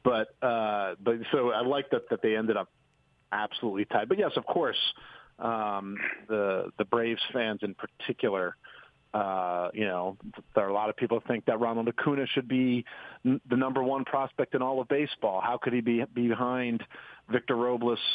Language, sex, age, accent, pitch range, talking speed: English, male, 40-59, American, 100-125 Hz, 185 wpm